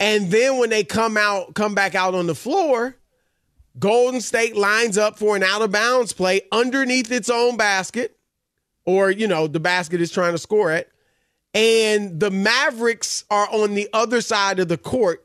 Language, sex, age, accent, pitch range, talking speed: English, male, 30-49, American, 175-230 Hz, 185 wpm